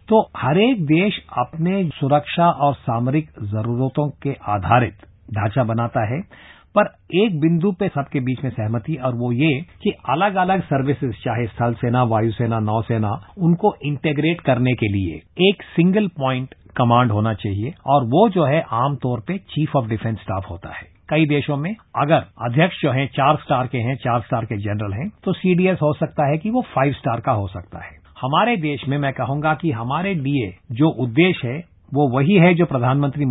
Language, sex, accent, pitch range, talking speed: English, male, Indian, 120-165 Hz, 180 wpm